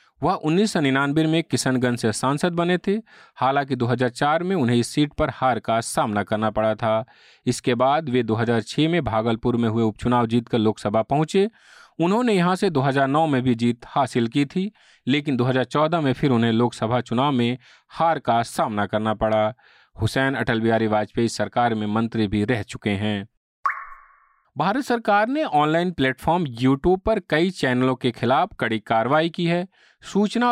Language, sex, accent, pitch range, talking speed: Hindi, male, native, 120-160 Hz, 165 wpm